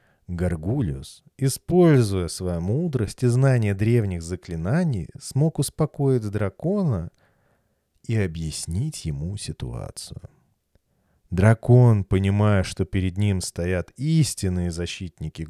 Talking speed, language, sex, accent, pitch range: 90 wpm, Russian, male, native, 90-135 Hz